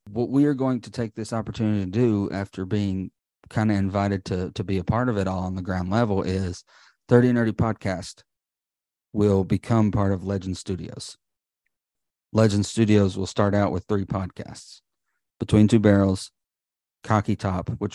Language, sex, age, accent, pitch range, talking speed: English, male, 40-59, American, 95-110 Hz, 175 wpm